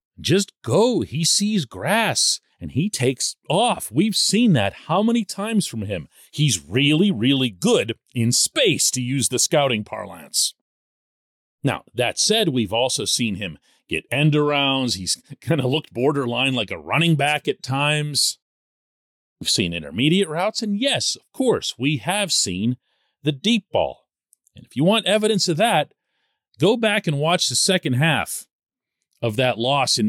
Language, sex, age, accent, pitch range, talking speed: English, male, 40-59, American, 115-180 Hz, 160 wpm